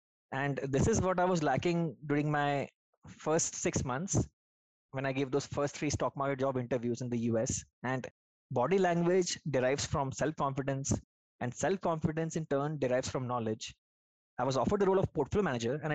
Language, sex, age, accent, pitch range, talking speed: English, male, 20-39, Indian, 130-165 Hz, 175 wpm